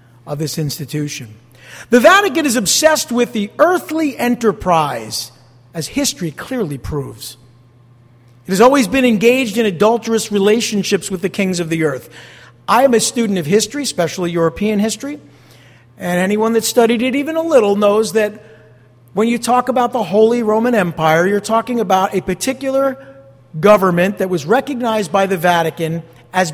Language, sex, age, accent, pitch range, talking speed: English, male, 50-69, American, 140-235 Hz, 155 wpm